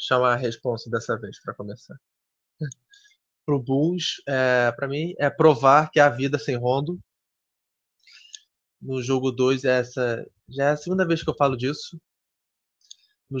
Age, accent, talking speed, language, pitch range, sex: 20-39, Brazilian, 150 wpm, Portuguese, 120-145 Hz, male